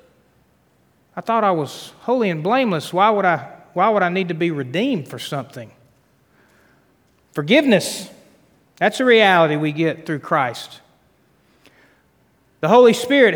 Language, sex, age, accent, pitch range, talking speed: English, male, 40-59, American, 150-205 Hz, 135 wpm